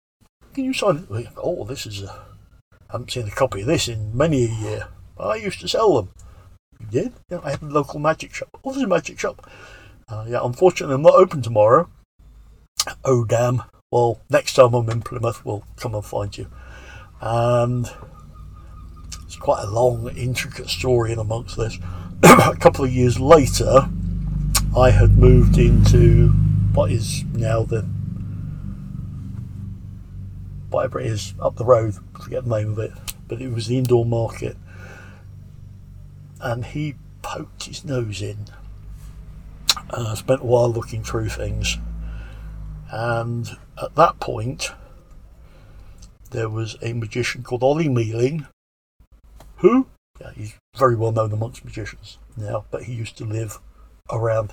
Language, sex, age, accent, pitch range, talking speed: English, male, 60-79, British, 100-125 Hz, 150 wpm